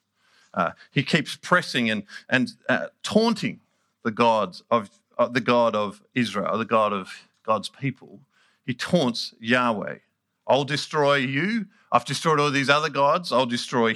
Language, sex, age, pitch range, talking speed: English, male, 50-69, 115-150 Hz, 155 wpm